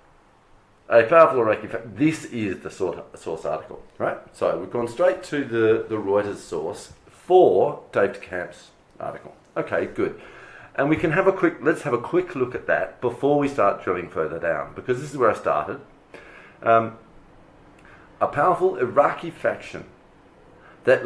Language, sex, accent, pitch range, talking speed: English, male, Australian, 115-170 Hz, 155 wpm